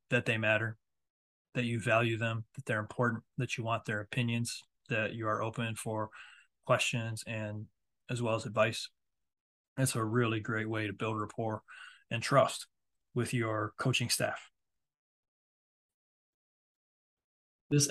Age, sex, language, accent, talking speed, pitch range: 20-39, male, English, American, 135 wpm, 120-145 Hz